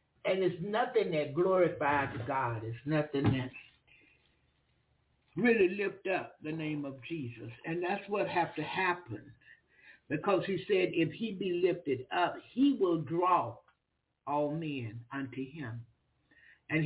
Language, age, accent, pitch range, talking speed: English, 60-79, American, 150-195 Hz, 135 wpm